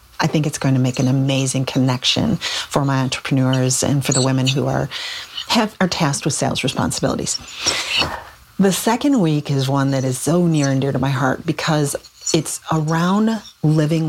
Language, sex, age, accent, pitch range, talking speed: English, female, 40-59, American, 135-165 Hz, 180 wpm